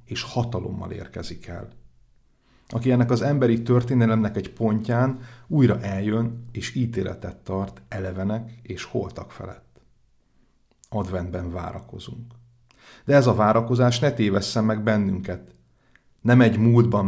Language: Hungarian